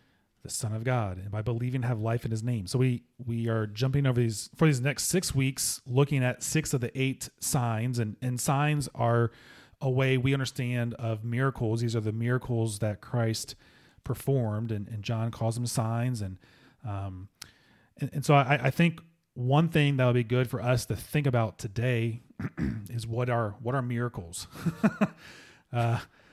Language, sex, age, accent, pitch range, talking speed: English, male, 30-49, American, 115-135 Hz, 185 wpm